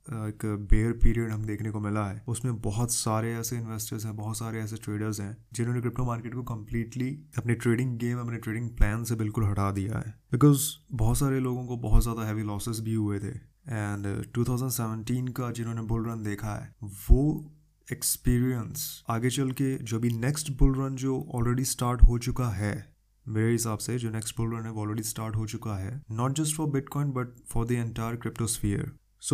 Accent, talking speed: native, 190 wpm